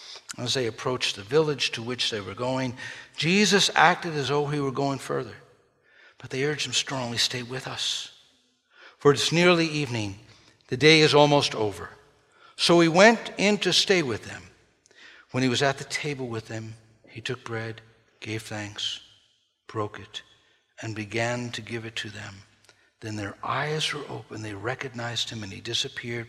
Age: 60-79